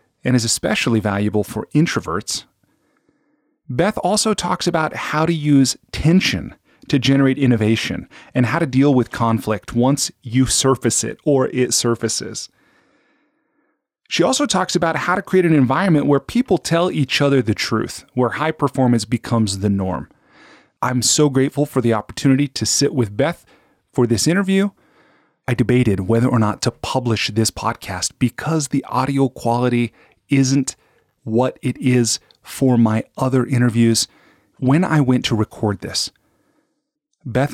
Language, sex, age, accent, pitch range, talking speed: English, male, 30-49, American, 110-140 Hz, 150 wpm